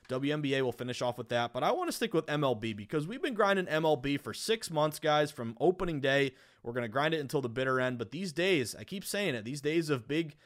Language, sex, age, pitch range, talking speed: English, male, 20-39, 125-160 Hz, 260 wpm